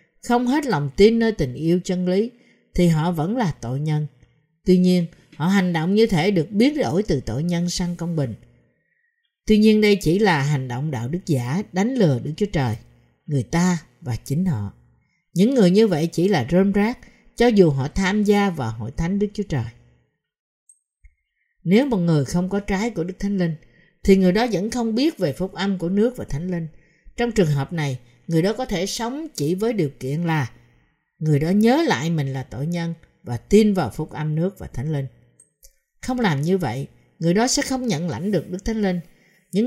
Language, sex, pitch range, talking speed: Vietnamese, female, 145-210 Hz, 210 wpm